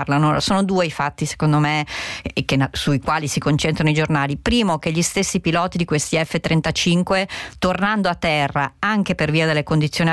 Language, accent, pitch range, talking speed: Italian, native, 145-180 Hz, 185 wpm